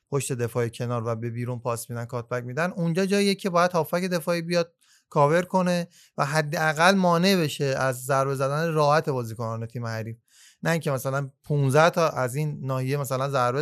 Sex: male